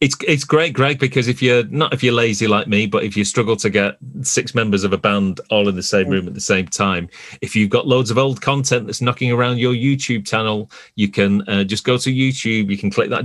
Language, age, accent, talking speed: English, 30-49, British, 260 wpm